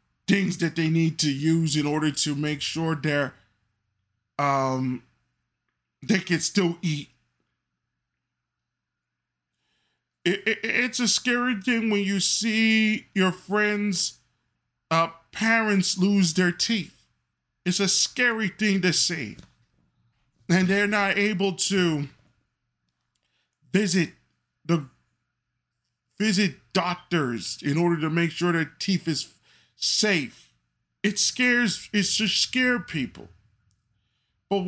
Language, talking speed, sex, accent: English, 110 wpm, male, American